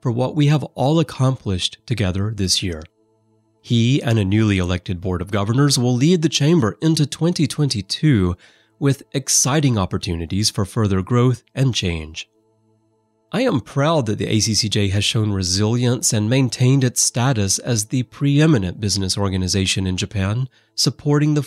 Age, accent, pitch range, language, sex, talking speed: 30-49, American, 100-130 Hz, English, male, 150 wpm